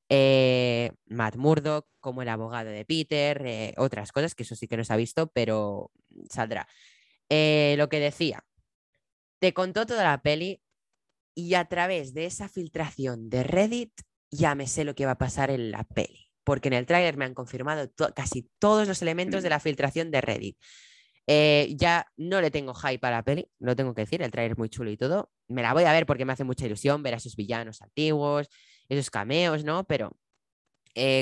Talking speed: 200 wpm